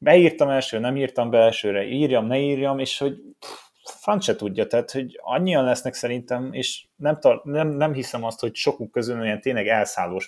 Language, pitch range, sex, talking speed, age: Hungarian, 110-135 Hz, male, 180 wpm, 30-49